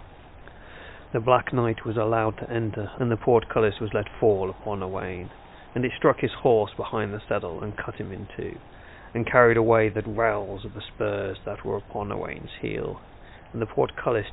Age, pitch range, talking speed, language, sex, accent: 40-59, 110-130 Hz, 185 wpm, English, male, British